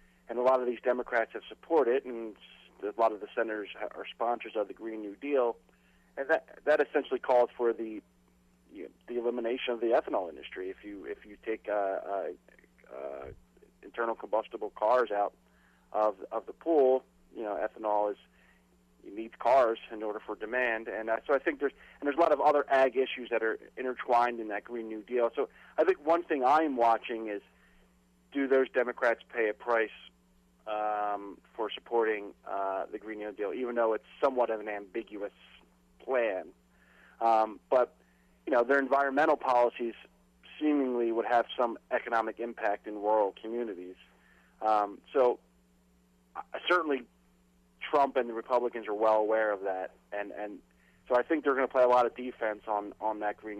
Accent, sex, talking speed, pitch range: American, male, 180 wpm, 95-125 Hz